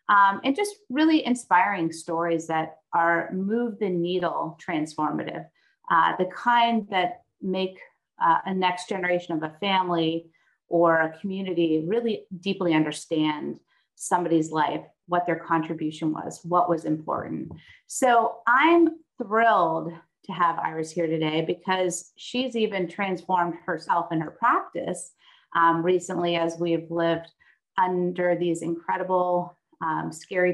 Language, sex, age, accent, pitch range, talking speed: English, female, 30-49, American, 165-200 Hz, 130 wpm